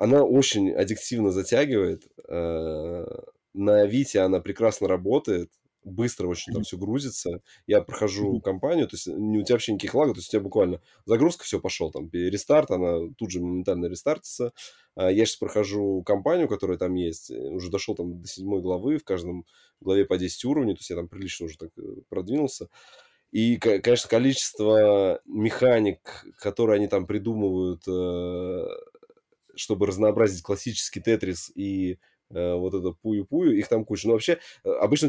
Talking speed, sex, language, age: 155 wpm, male, Russian, 20-39